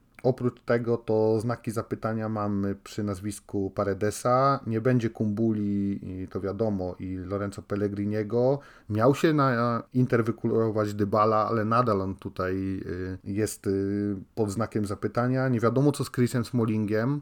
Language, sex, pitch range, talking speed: Polish, male, 105-120 Hz, 125 wpm